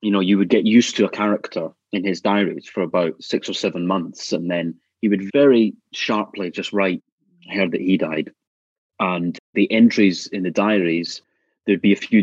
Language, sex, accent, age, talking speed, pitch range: English, male, British, 30-49, 195 wpm, 95-115 Hz